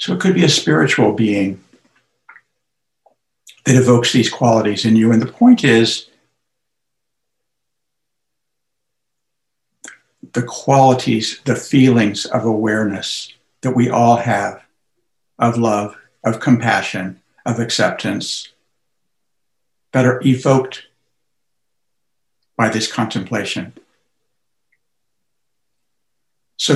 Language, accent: English, American